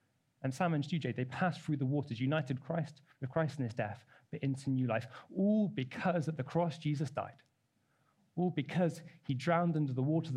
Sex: male